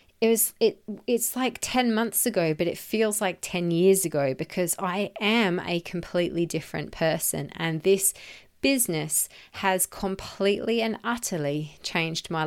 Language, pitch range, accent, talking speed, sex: English, 175-215 Hz, Australian, 150 wpm, female